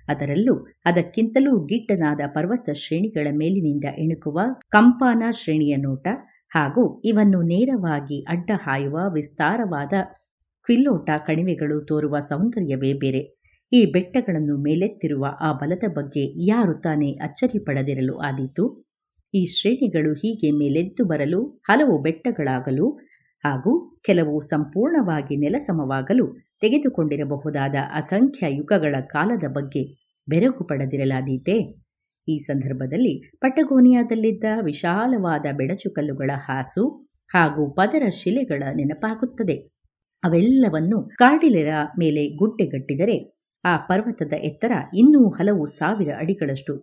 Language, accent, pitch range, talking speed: Kannada, native, 145-220 Hz, 90 wpm